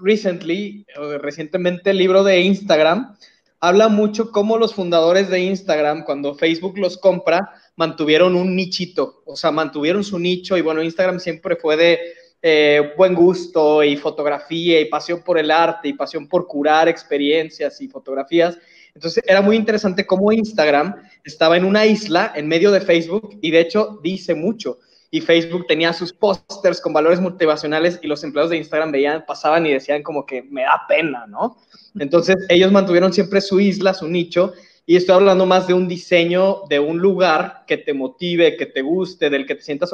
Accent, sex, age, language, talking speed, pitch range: Mexican, male, 20-39, Spanish, 175 wpm, 155-190 Hz